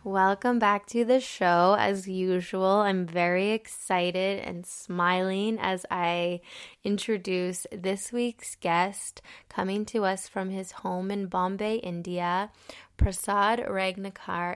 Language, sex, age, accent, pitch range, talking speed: English, female, 10-29, American, 180-205 Hz, 120 wpm